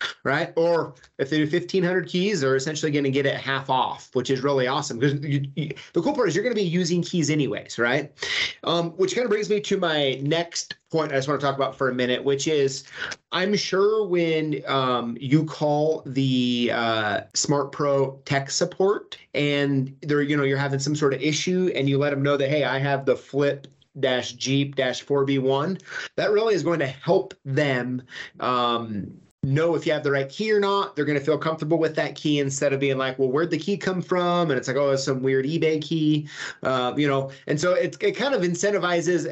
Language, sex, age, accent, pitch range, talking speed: English, male, 30-49, American, 135-165 Hz, 220 wpm